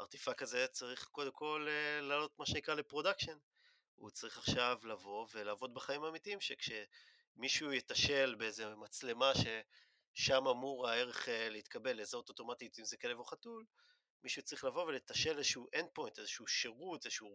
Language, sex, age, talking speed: Hebrew, male, 30-49, 140 wpm